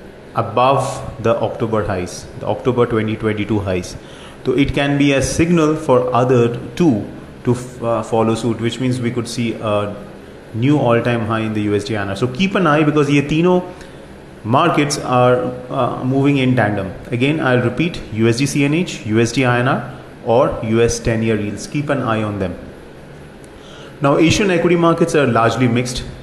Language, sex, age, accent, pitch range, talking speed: English, male, 30-49, Indian, 110-135 Hz, 160 wpm